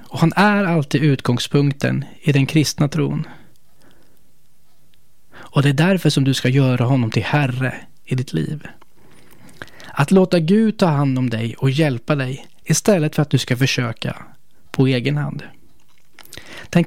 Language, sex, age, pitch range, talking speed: Swedish, male, 20-39, 130-170 Hz, 155 wpm